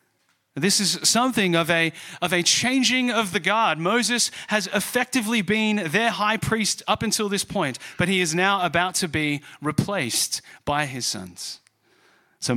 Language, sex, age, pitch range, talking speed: English, male, 30-49, 160-225 Hz, 160 wpm